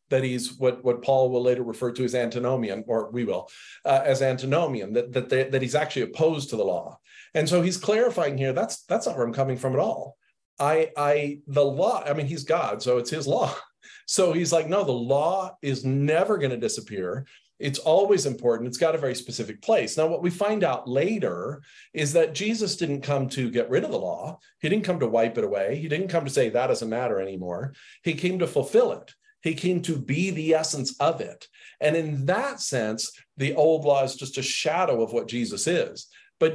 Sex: male